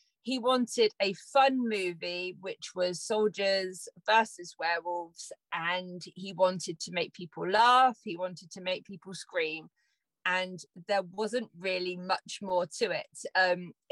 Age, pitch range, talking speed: 30-49, 180-220 Hz, 140 wpm